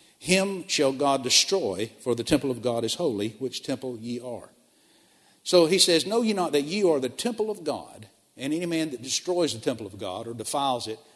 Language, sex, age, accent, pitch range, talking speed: English, male, 50-69, American, 120-160 Hz, 215 wpm